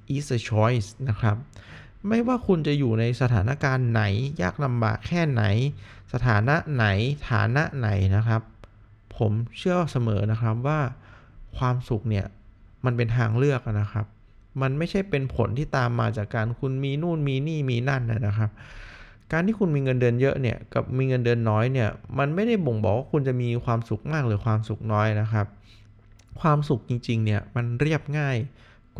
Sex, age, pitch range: male, 20-39, 110-145 Hz